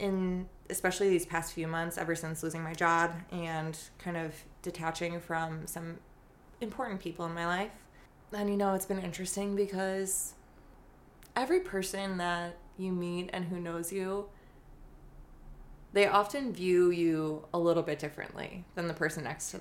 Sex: female